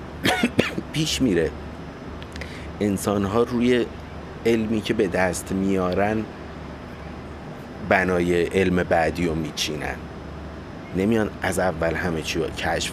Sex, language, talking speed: male, Persian, 95 wpm